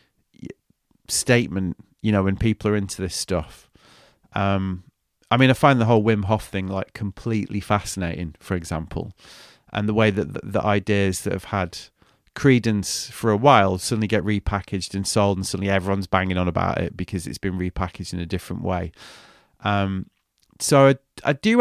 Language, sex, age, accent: English, male, 30-49, British